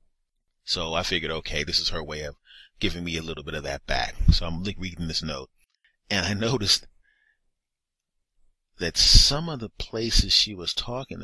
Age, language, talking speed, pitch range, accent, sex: 30-49, English, 175 wpm, 80-110 Hz, American, male